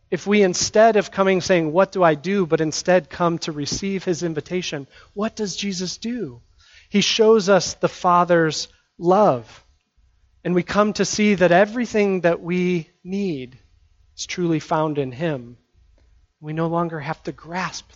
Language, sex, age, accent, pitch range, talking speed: English, male, 40-59, American, 140-195 Hz, 160 wpm